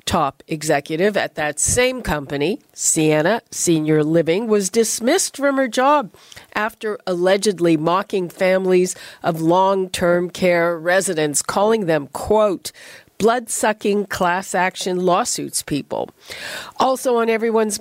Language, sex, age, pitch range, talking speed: English, female, 50-69, 175-225 Hz, 110 wpm